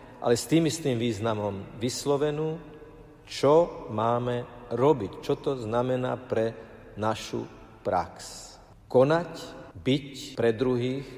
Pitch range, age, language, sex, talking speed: 110-140 Hz, 50-69, Slovak, male, 100 wpm